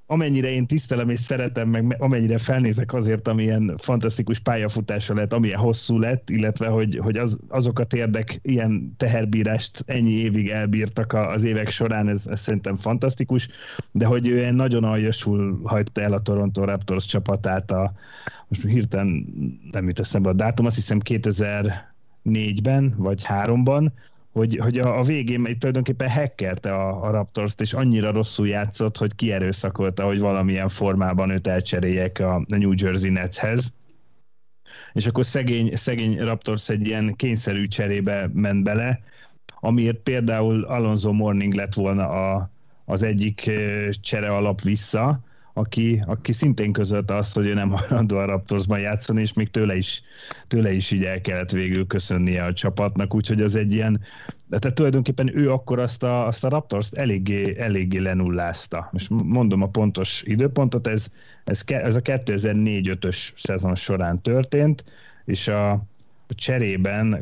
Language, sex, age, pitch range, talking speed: Hungarian, male, 30-49, 100-120 Hz, 145 wpm